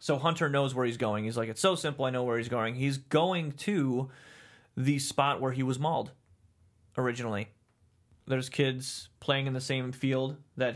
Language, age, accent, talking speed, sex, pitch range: English, 30-49, American, 190 wpm, male, 115-135 Hz